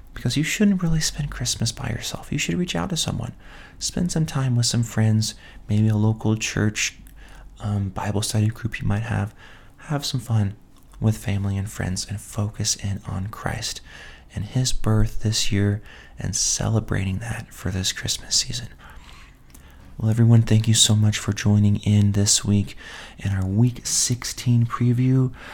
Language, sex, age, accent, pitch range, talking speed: English, male, 30-49, American, 105-125 Hz, 165 wpm